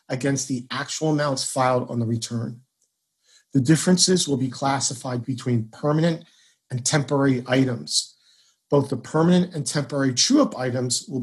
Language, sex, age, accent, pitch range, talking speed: English, male, 40-59, American, 125-155 Hz, 140 wpm